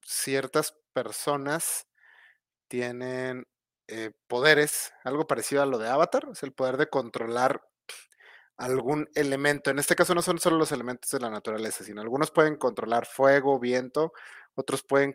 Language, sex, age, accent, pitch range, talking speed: Spanish, male, 30-49, Mexican, 120-150 Hz, 145 wpm